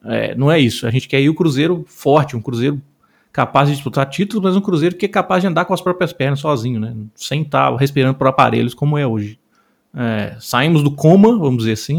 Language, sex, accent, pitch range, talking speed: Portuguese, male, Brazilian, 130-165 Hz, 235 wpm